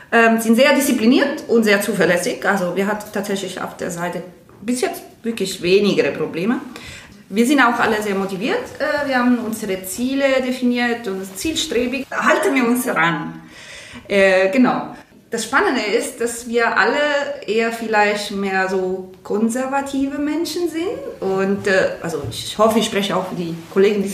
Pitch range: 190-245 Hz